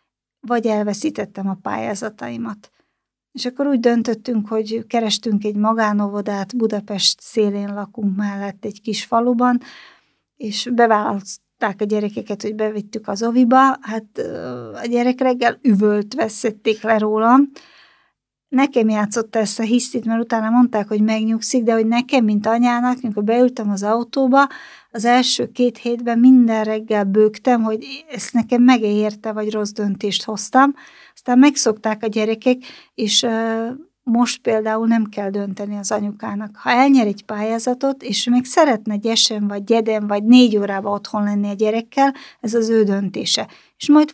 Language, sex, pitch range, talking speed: Hungarian, female, 210-245 Hz, 145 wpm